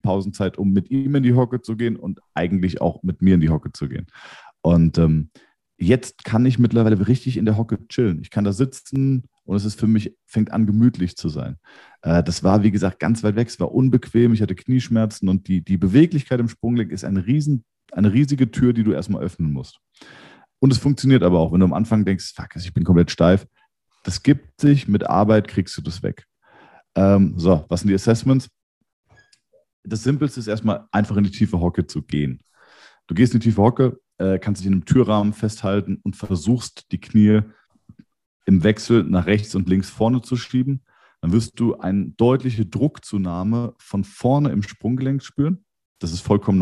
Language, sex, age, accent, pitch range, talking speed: German, male, 40-59, German, 95-125 Hz, 200 wpm